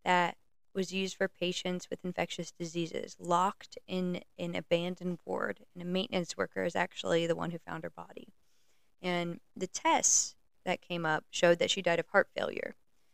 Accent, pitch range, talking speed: American, 175-200 Hz, 175 wpm